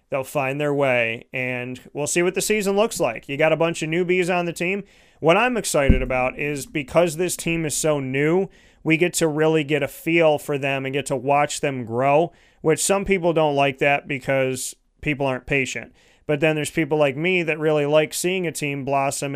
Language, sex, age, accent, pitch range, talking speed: English, male, 30-49, American, 140-160 Hz, 215 wpm